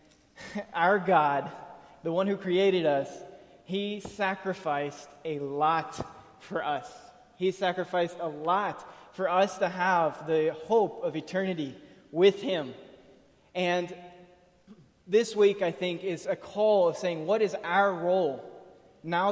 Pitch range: 160-190 Hz